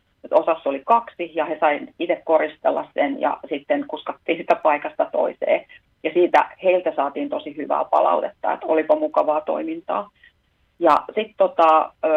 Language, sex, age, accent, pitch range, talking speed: Finnish, female, 30-49, native, 155-190 Hz, 145 wpm